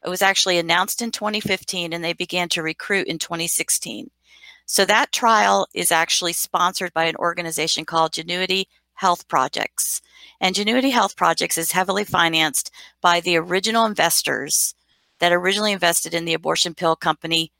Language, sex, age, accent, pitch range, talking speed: English, female, 40-59, American, 165-195 Hz, 155 wpm